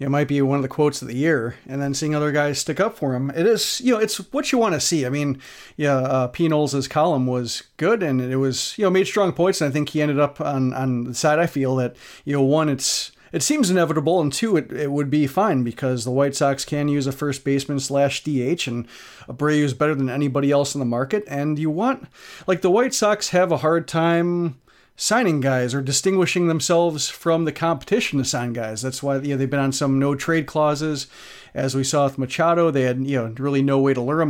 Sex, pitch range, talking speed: male, 135-165 Hz, 245 wpm